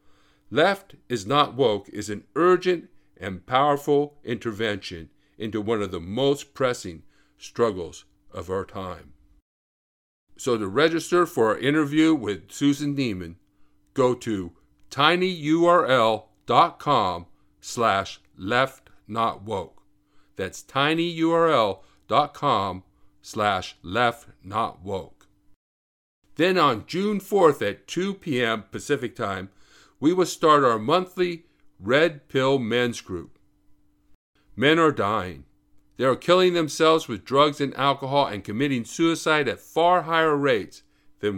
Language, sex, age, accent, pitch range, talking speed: English, male, 50-69, American, 100-155 Hz, 105 wpm